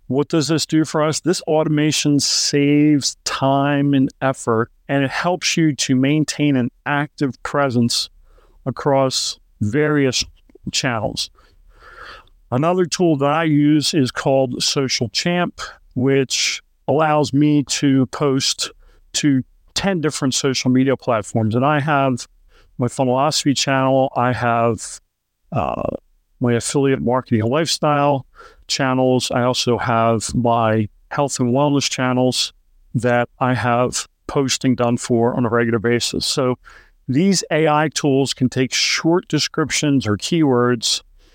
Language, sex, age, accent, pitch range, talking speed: English, male, 50-69, American, 125-150 Hz, 125 wpm